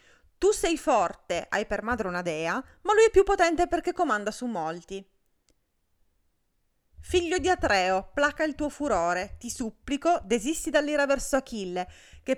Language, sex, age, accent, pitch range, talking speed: Italian, female, 20-39, native, 185-270 Hz, 150 wpm